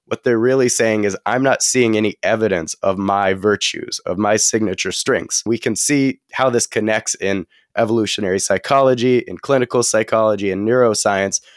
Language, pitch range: English, 100-120 Hz